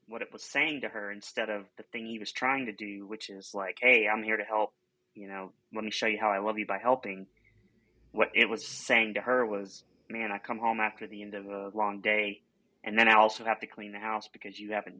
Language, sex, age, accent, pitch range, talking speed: English, male, 30-49, American, 100-110 Hz, 260 wpm